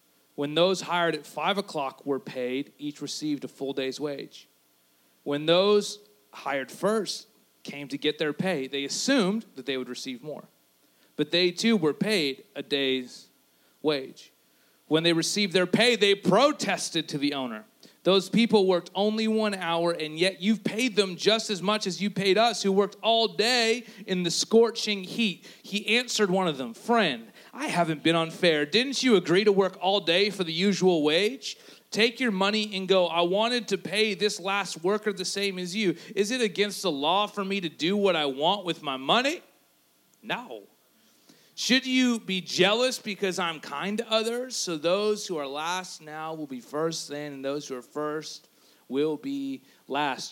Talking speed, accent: 185 wpm, American